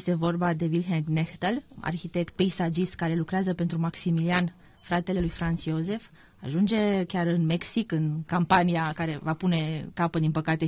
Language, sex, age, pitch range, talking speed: Romanian, female, 20-39, 165-200 Hz, 150 wpm